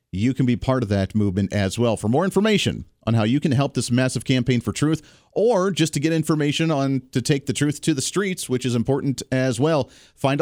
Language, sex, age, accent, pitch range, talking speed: English, male, 40-59, American, 110-145 Hz, 235 wpm